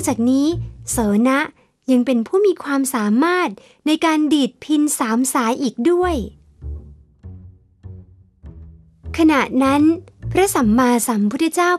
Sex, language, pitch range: female, Thai, 245-325 Hz